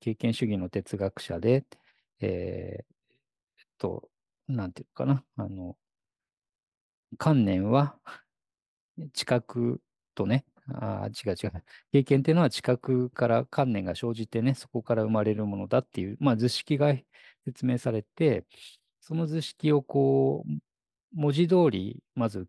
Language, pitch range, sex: Japanese, 105-140 Hz, male